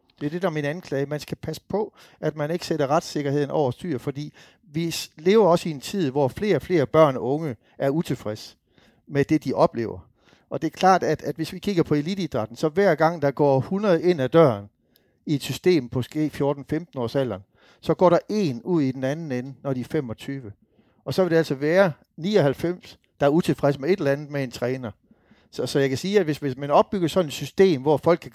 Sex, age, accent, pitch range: male, 60-79, Danish, 130-160 Hz